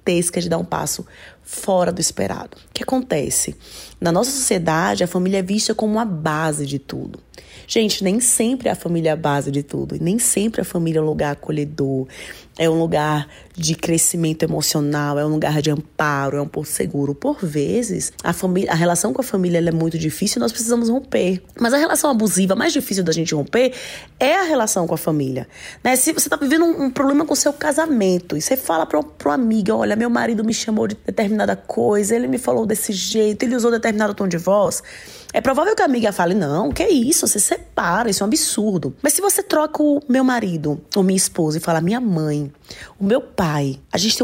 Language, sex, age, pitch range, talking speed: Portuguese, female, 20-39, 165-230 Hz, 220 wpm